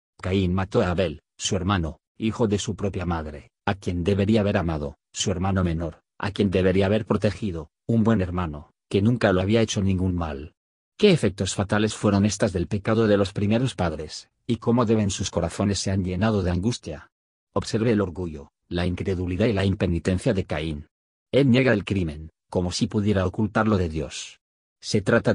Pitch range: 90-110 Hz